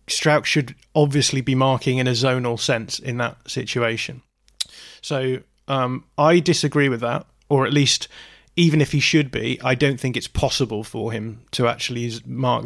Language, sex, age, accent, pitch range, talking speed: English, male, 30-49, British, 120-140 Hz, 170 wpm